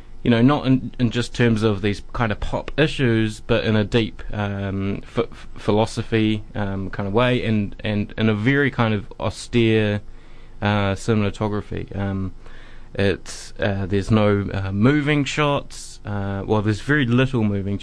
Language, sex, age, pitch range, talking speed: English, male, 20-39, 100-120 Hz, 160 wpm